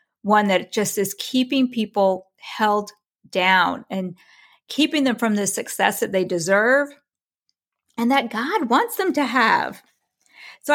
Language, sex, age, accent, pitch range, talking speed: English, female, 40-59, American, 200-260 Hz, 140 wpm